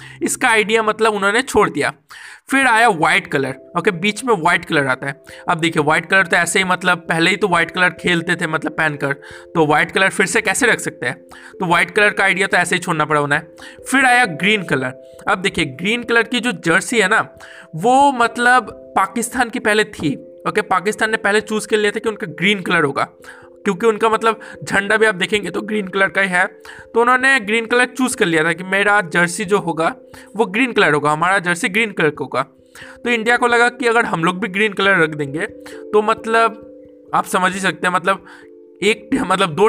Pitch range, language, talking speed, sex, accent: 170-230 Hz, Hindi, 220 wpm, male, native